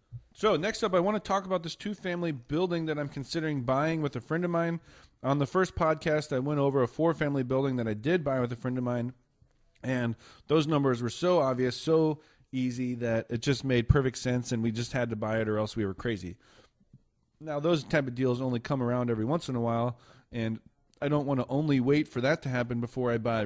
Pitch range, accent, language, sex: 115-140 Hz, American, English, male